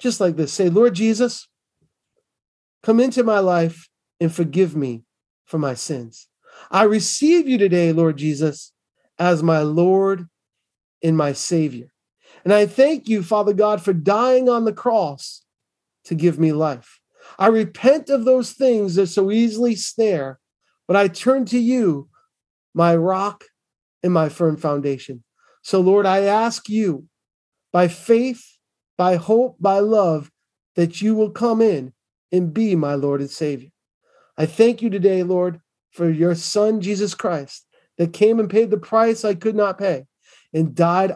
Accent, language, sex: American, English, male